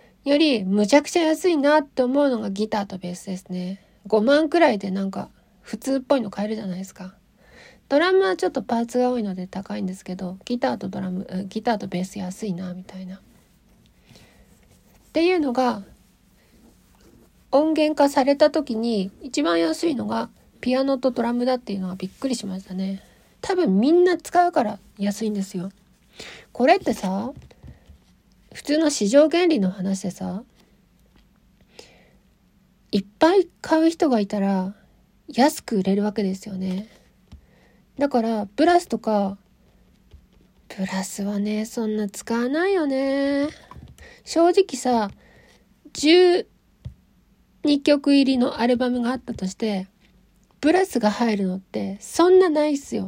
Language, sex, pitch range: Japanese, female, 195-285 Hz